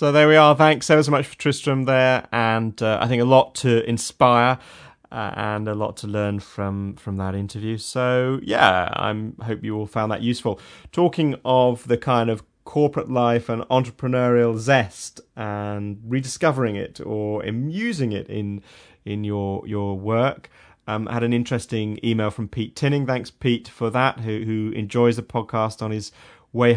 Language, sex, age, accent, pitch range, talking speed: English, male, 30-49, British, 105-130 Hz, 180 wpm